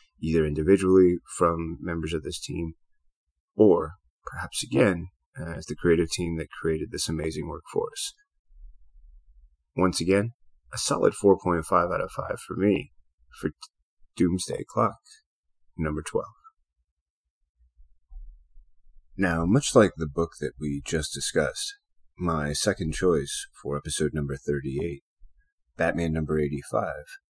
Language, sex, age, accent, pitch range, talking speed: English, male, 30-49, American, 70-95 Hz, 120 wpm